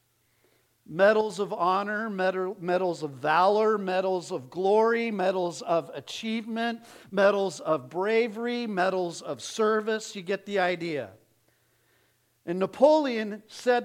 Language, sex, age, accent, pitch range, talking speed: English, male, 50-69, American, 150-225 Hz, 110 wpm